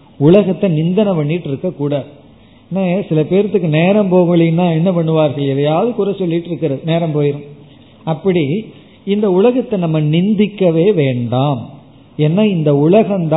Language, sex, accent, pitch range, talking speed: Tamil, male, native, 145-190 Hz, 65 wpm